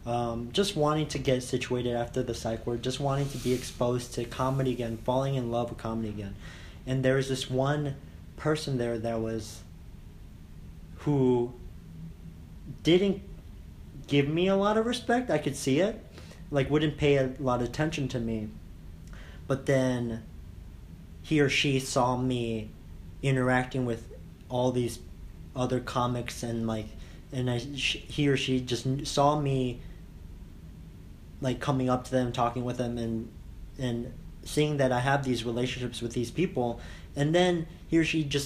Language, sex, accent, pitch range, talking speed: English, male, American, 115-150 Hz, 160 wpm